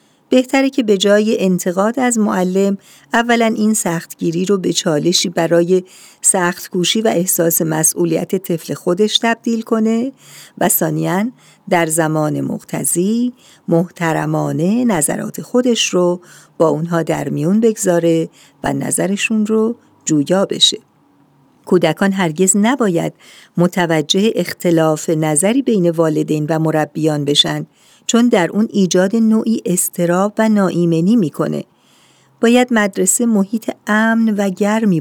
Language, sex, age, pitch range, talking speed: Persian, female, 50-69, 165-215 Hz, 115 wpm